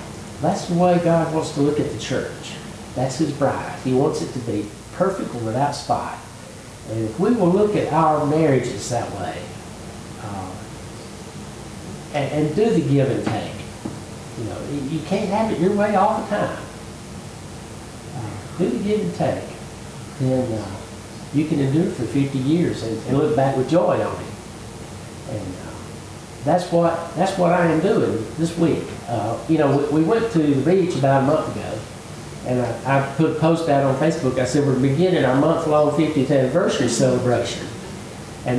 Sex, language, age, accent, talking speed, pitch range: male, English, 60-79, American, 180 wpm, 115-155 Hz